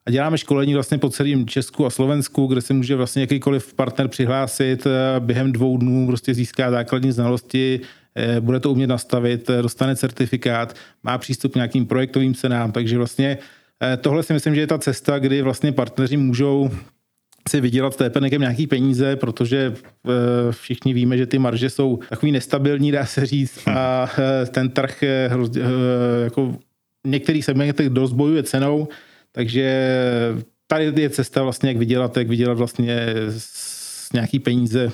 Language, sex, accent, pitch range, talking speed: Czech, male, native, 120-135 Hz, 145 wpm